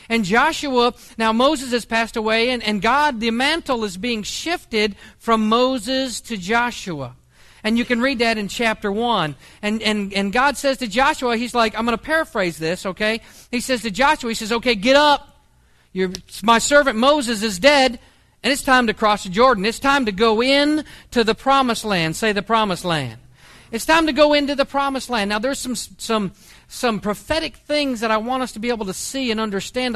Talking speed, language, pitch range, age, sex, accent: 205 wpm, English, 205-255 Hz, 40-59, male, American